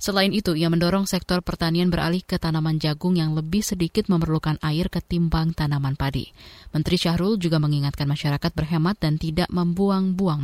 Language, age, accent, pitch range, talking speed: Indonesian, 20-39, native, 160-210 Hz, 155 wpm